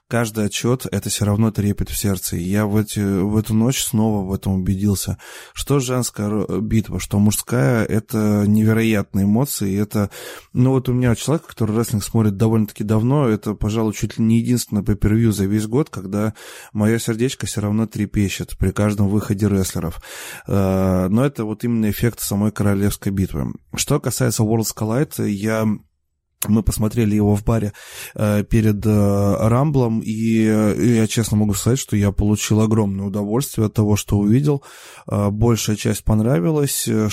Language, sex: Russian, male